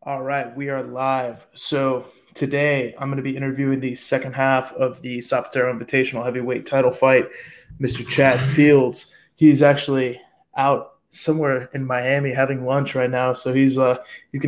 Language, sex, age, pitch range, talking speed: English, male, 20-39, 125-140 Hz, 165 wpm